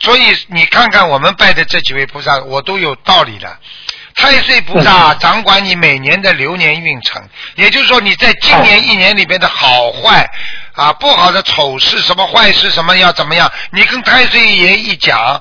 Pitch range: 170-220 Hz